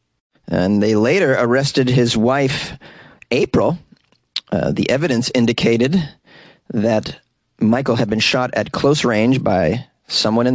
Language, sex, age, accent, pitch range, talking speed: English, male, 30-49, American, 115-165 Hz, 125 wpm